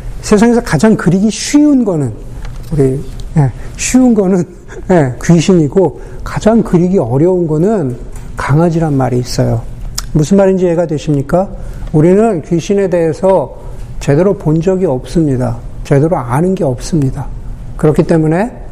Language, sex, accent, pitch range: Korean, male, native, 130-190 Hz